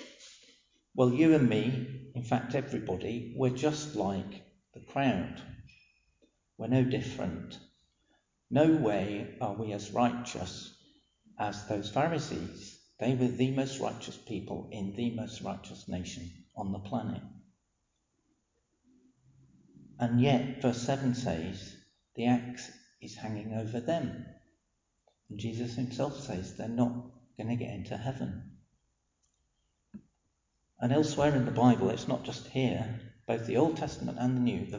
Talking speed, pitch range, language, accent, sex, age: 130 wpm, 105-130 Hz, English, British, male, 50-69